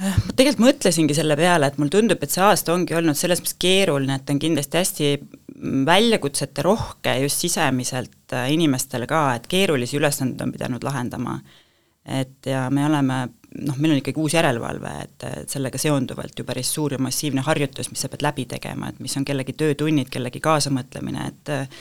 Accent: Finnish